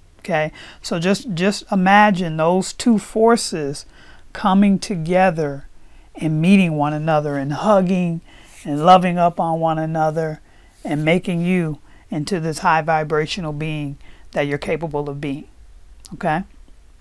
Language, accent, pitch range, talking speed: English, American, 150-185 Hz, 125 wpm